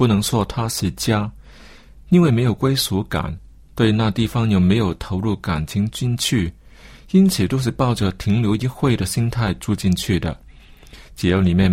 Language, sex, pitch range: Chinese, male, 90-125 Hz